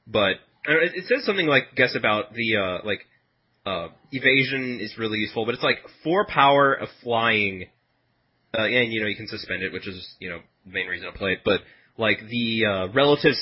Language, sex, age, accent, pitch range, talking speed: English, male, 30-49, American, 105-130 Hz, 200 wpm